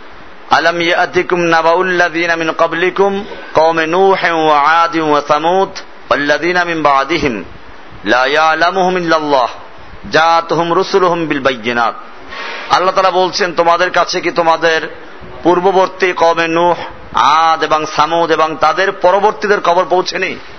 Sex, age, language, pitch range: male, 50-69, Bengali, 160-190 Hz